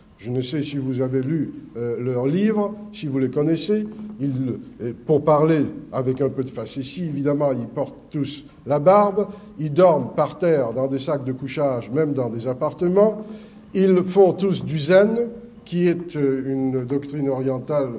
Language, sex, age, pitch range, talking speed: French, male, 50-69, 140-190 Hz, 175 wpm